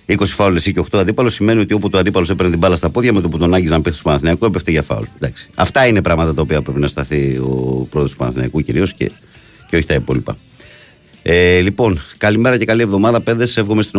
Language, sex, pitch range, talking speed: Greek, male, 75-100 Hz, 235 wpm